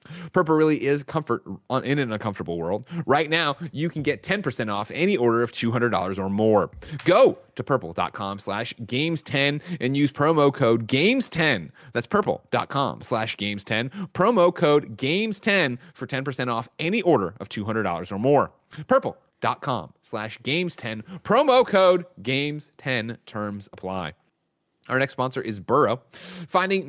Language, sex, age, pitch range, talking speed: English, male, 30-49, 120-165 Hz, 135 wpm